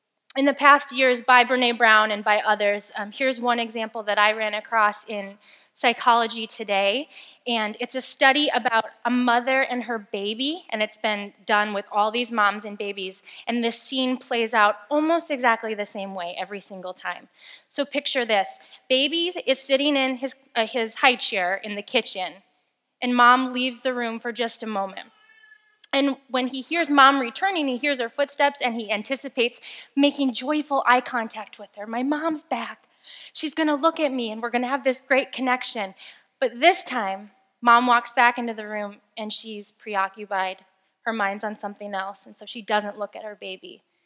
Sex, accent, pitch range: female, American, 210-265 Hz